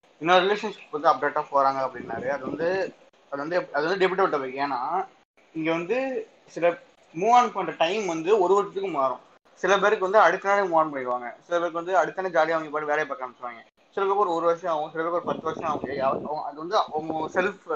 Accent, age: native, 20-39